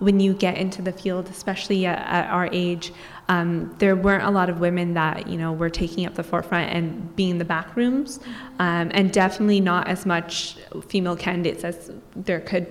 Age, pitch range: 20-39, 175-195 Hz